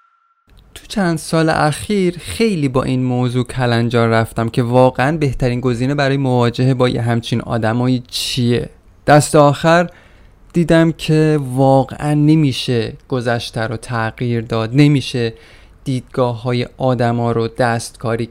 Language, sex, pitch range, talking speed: Persian, male, 120-160 Hz, 115 wpm